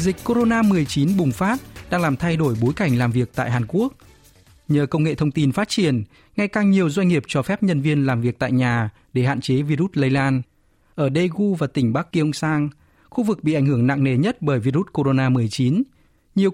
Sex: male